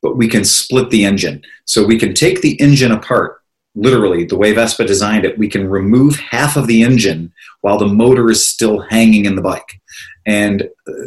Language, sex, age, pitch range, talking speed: English, male, 30-49, 105-130 Hz, 195 wpm